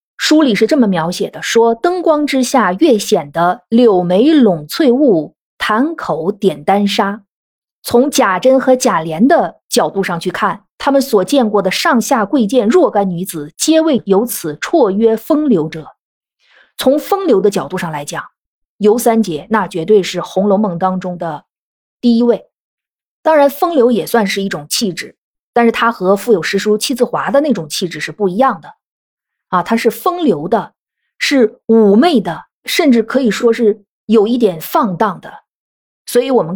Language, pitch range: Chinese, 185-255 Hz